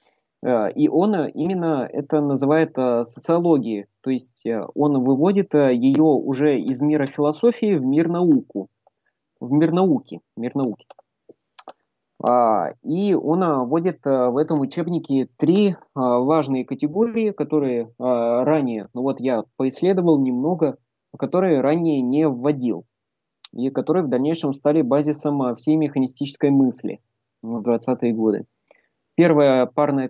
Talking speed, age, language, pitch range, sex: 110 wpm, 20-39, Russian, 125-155 Hz, male